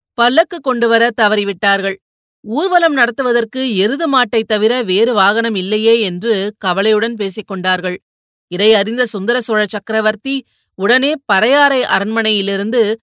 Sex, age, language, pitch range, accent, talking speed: female, 30-49, Tamil, 200-245 Hz, native, 100 wpm